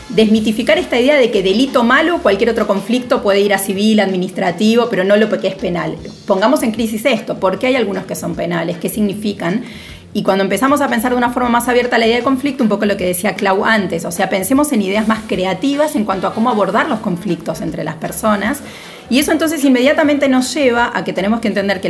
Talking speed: 230 wpm